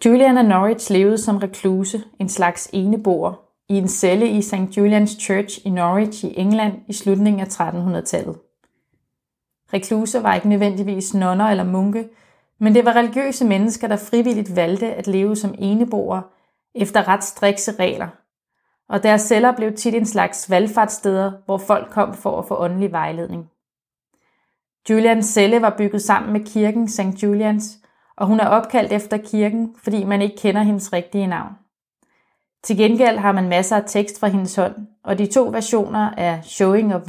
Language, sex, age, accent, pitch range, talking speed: English, female, 30-49, Danish, 190-215 Hz, 165 wpm